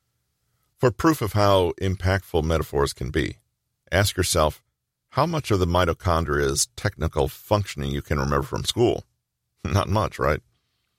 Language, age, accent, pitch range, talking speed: English, 40-59, American, 80-105 Hz, 135 wpm